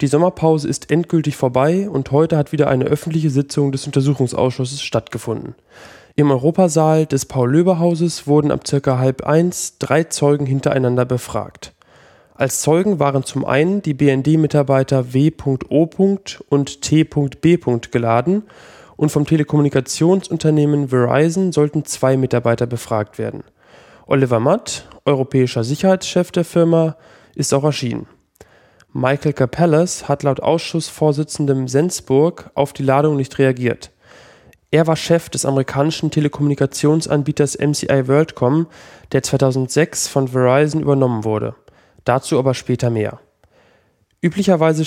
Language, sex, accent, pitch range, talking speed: German, male, German, 130-160 Hz, 115 wpm